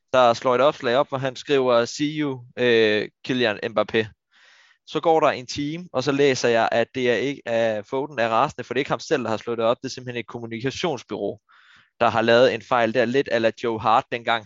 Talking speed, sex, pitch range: 235 wpm, male, 110-135 Hz